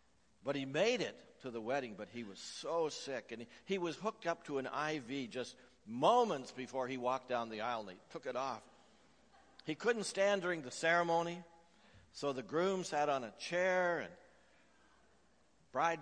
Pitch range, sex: 115-165 Hz, male